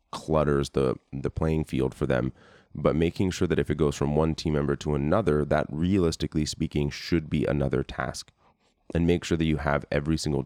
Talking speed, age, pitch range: 200 wpm, 30-49, 70-80 Hz